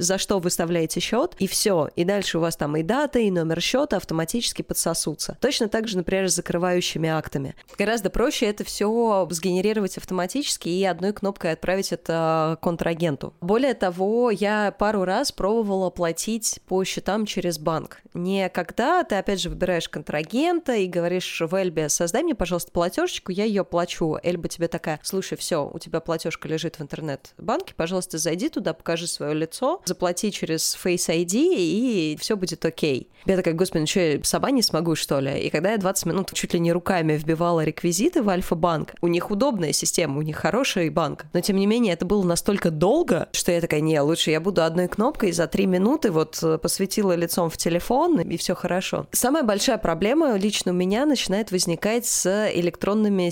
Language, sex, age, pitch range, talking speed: Russian, female, 20-39, 170-205 Hz, 180 wpm